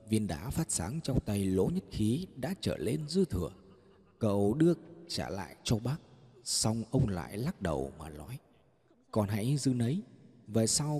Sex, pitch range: male, 95-150 Hz